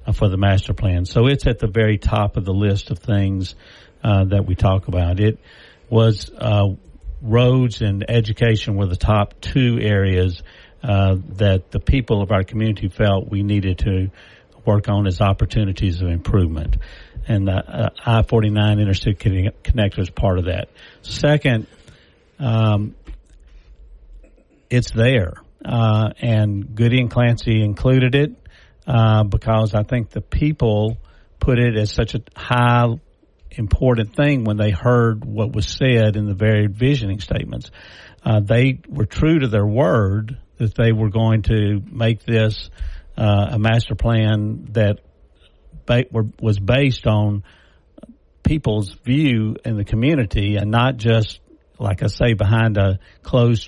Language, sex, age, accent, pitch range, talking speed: English, male, 50-69, American, 100-115 Hz, 150 wpm